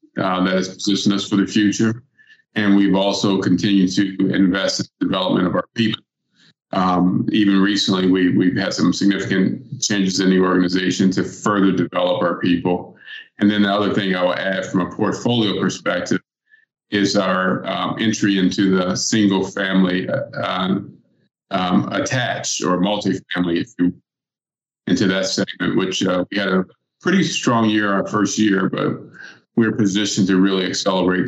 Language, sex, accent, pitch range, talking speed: English, male, American, 95-105 Hz, 160 wpm